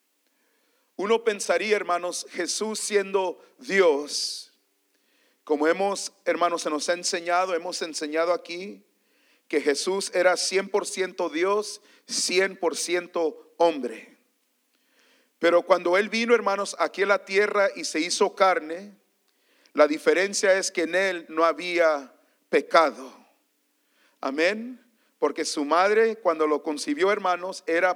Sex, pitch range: male, 170-225 Hz